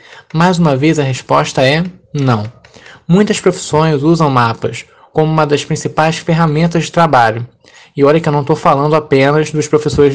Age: 20-39